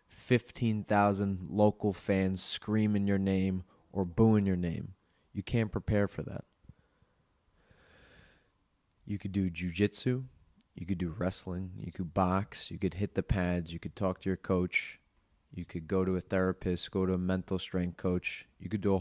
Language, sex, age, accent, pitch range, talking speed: English, male, 20-39, American, 90-105 Hz, 165 wpm